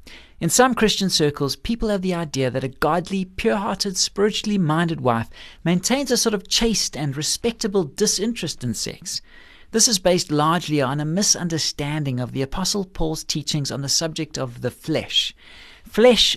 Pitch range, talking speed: 135-195 Hz, 160 wpm